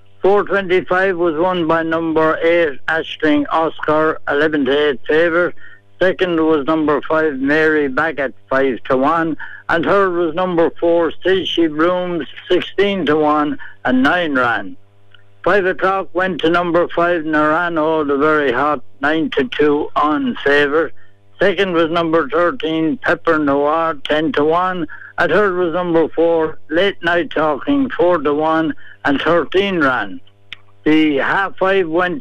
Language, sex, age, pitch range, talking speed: English, male, 60-79, 145-175 Hz, 140 wpm